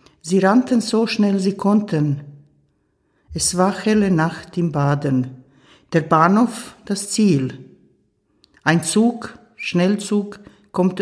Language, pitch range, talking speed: German, 150-200 Hz, 110 wpm